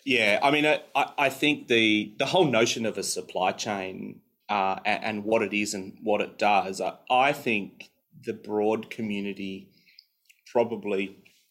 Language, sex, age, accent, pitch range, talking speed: English, male, 30-49, Australian, 100-125 Hz, 160 wpm